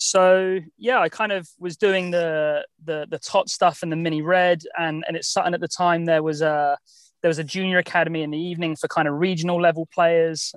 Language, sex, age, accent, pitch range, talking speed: English, male, 20-39, British, 150-170 Hz, 235 wpm